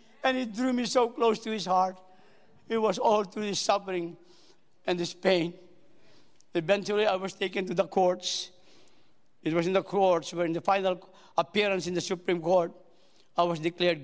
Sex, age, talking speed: male, 50-69, 180 wpm